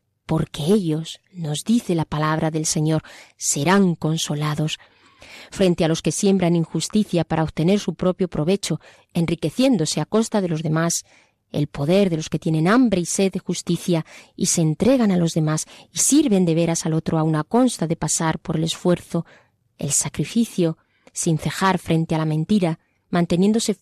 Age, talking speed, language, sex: 20-39, 170 wpm, Spanish, female